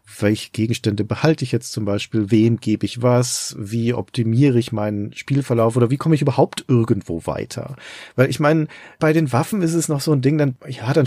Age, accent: 40-59, German